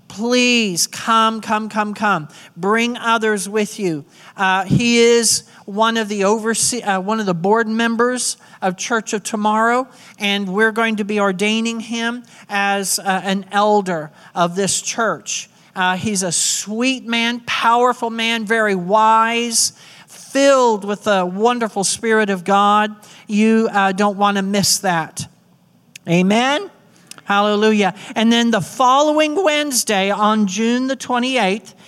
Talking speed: 140 wpm